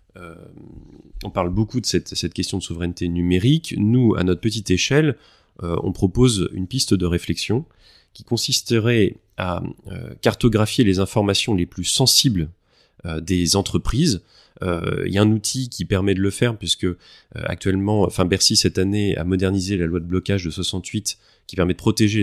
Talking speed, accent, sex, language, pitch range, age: 180 wpm, French, male, French, 90-115 Hz, 30-49